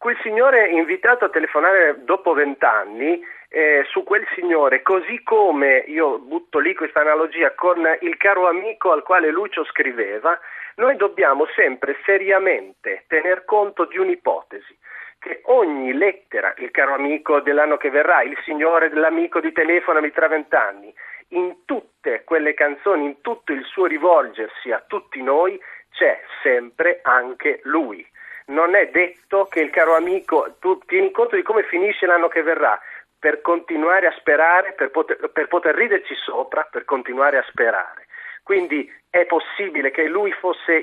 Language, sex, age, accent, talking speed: Italian, male, 40-59, native, 150 wpm